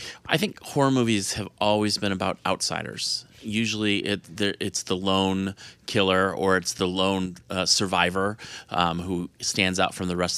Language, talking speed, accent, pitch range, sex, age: English, 155 wpm, American, 90-100 Hz, male, 30-49